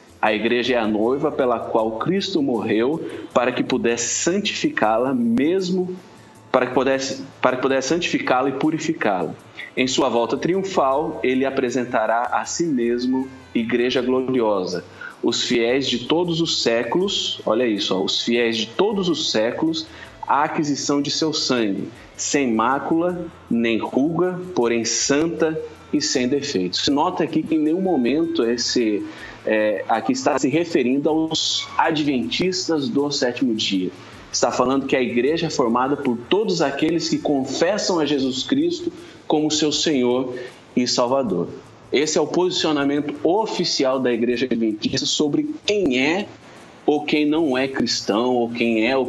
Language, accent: Portuguese, Brazilian